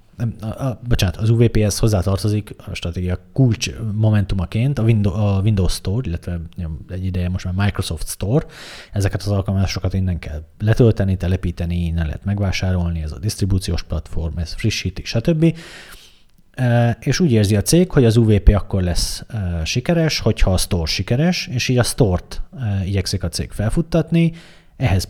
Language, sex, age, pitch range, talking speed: Hungarian, male, 30-49, 90-110 Hz, 145 wpm